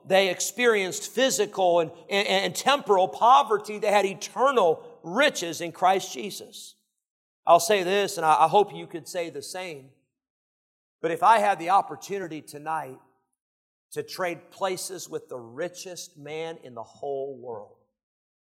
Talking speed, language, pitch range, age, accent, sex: 145 wpm, English, 170-245 Hz, 50-69, American, male